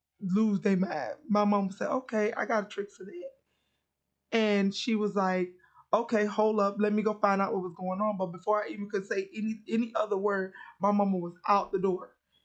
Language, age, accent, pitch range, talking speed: English, 20-39, American, 190-210 Hz, 215 wpm